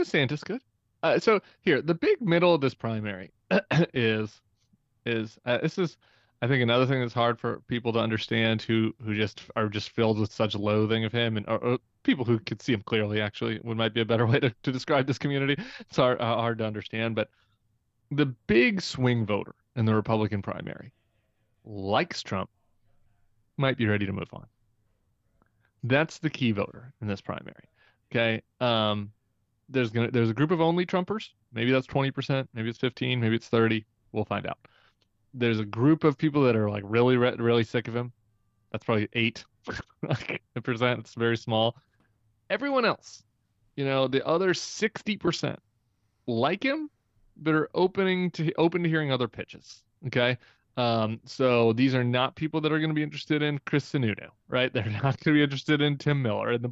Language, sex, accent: English, male, American